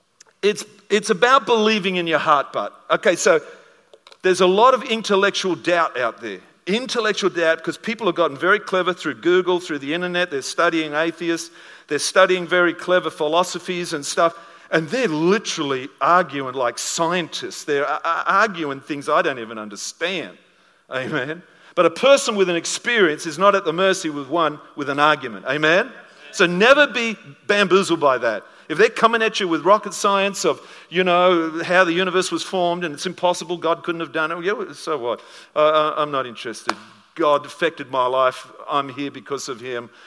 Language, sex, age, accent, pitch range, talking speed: English, male, 50-69, Australian, 150-190 Hz, 175 wpm